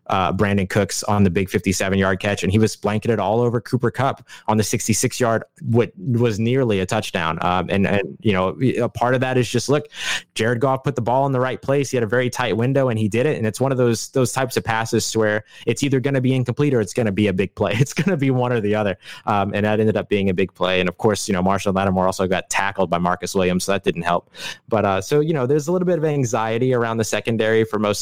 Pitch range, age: 95-120 Hz, 20-39